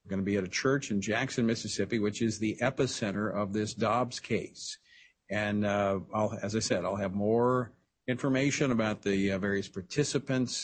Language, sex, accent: English, male, American